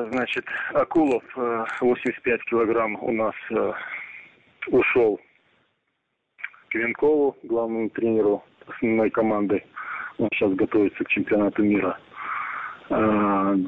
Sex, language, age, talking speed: male, Russian, 20-39, 90 wpm